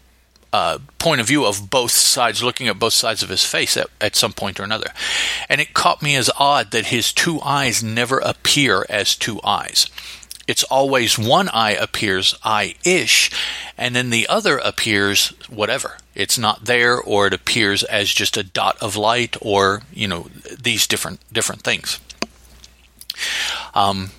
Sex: male